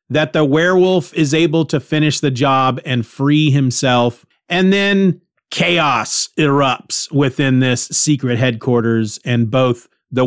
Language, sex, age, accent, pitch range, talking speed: English, male, 40-59, American, 130-175 Hz, 135 wpm